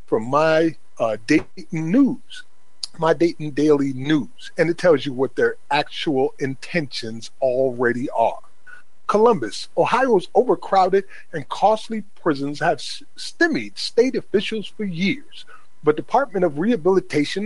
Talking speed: 120 wpm